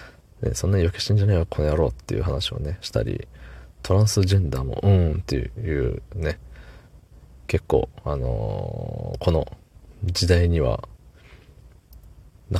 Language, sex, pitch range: Japanese, male, 80-105 Hz